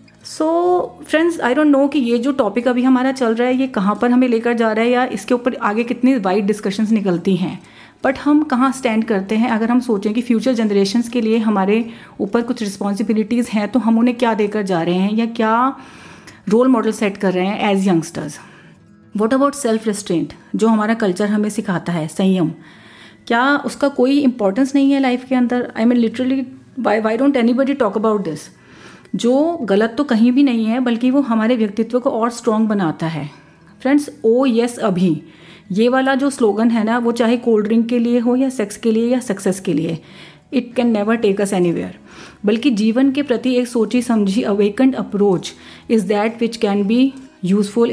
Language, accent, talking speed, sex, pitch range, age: Hindi, native, 200 wpm, female, 205-250 Hz, 30-49